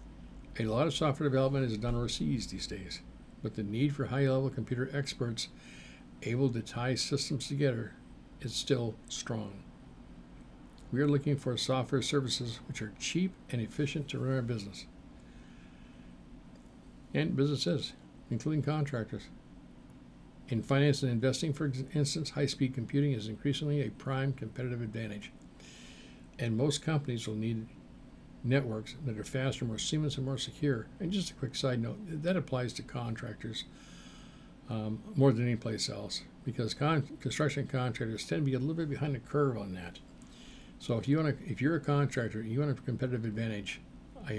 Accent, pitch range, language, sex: American, 110-140 Hz, English, male